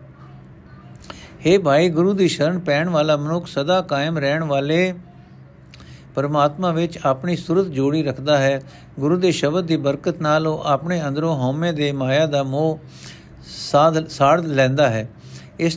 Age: 60-79